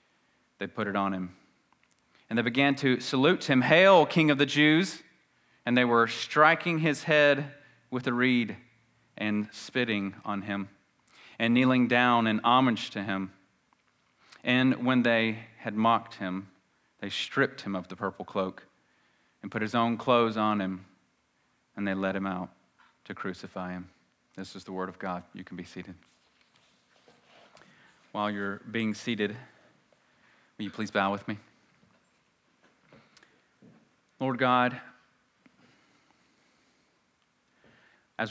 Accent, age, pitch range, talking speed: American, 30-49, 100-125 Hz, 135 wpm